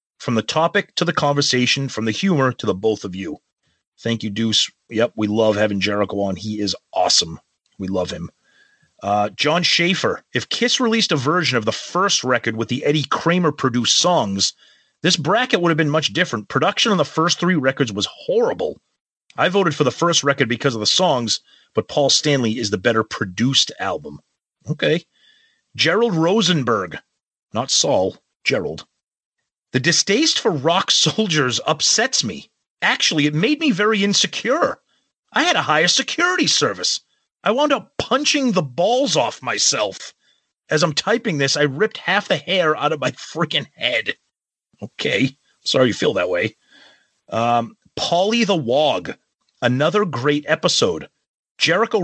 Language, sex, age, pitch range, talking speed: English, male, 30-49, 120-185 Hz, 165 wpm